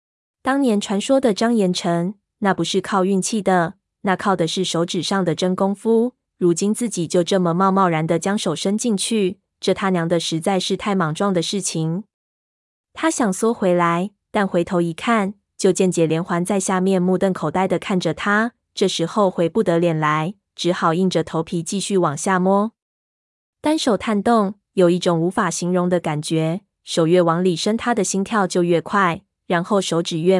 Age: 20-39